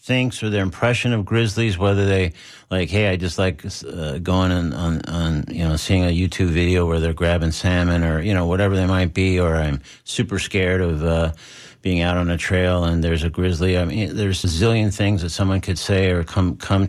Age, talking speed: 50-69, 225 wpm